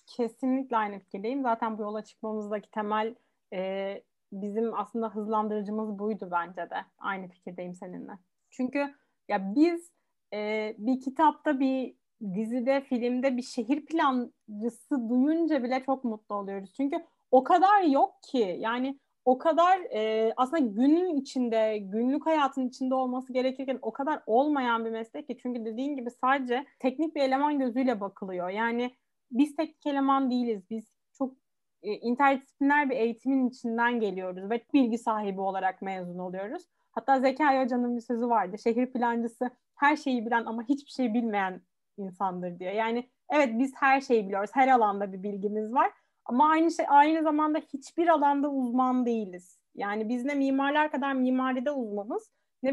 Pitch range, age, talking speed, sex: 215-280 Hz, 30-49, 150 wpm, female